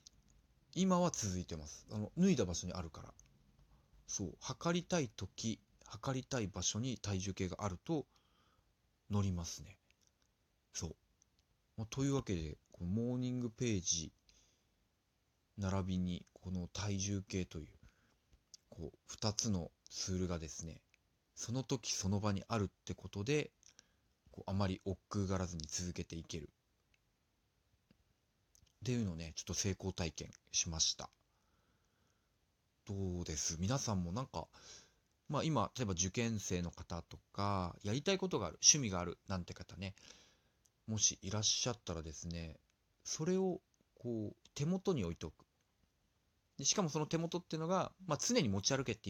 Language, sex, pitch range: Japanese, male, 90-120 Hz